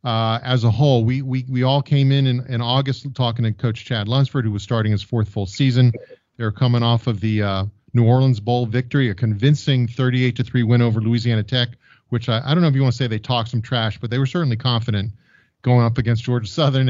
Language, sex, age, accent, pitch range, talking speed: English, male, 40-59, American, 110-130 Hz, 240 wpm